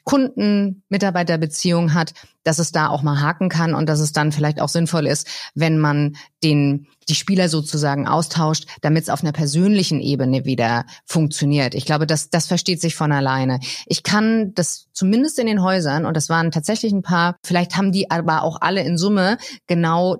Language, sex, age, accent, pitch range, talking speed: German, female, 30-49, German, 160-200 Hz, 185 wpm